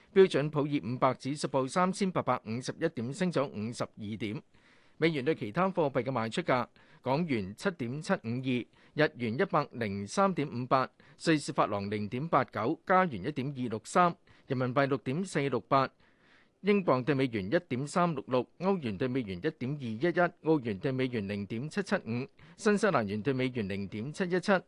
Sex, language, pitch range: male, Chinese, 125-175 Hz